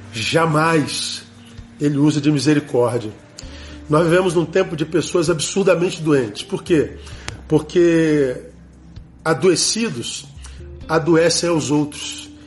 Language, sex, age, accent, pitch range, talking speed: Portuguese, male, 40-59, Brazilian, 115-160 Hz, 95 wpm